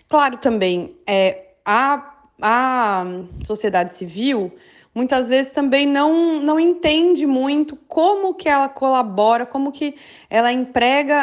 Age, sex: 20-39, female